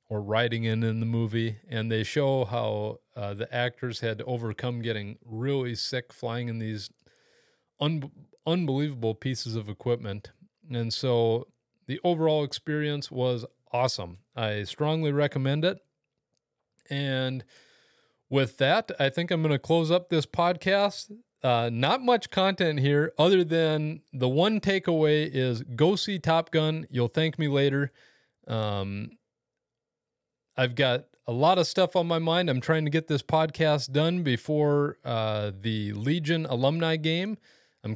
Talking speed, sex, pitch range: 145 wpm, male, 115-155 Hz